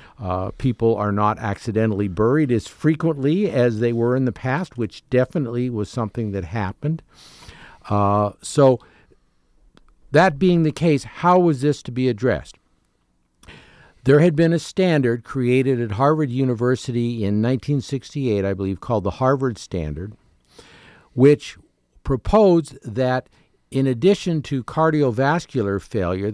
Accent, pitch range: American, 105-140 Hz